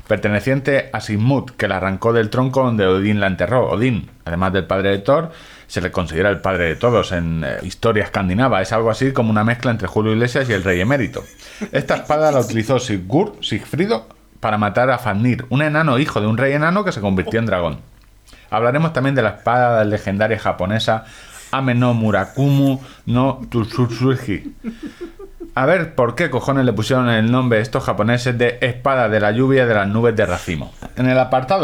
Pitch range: 105-130 Hz